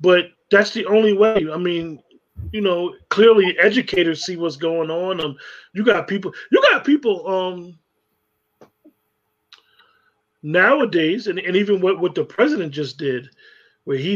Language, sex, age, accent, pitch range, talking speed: English, male, 30-49, American, 155-210 Hz, 150 wpm